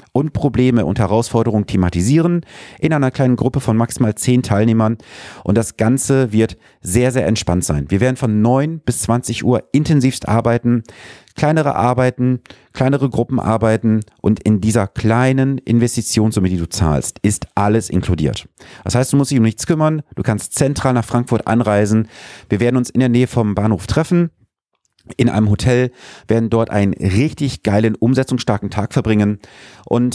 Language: German